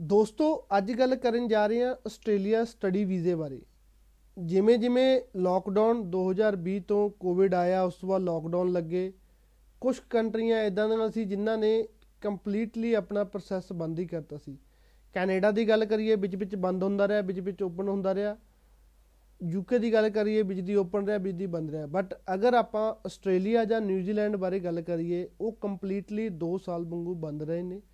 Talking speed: 135 wpm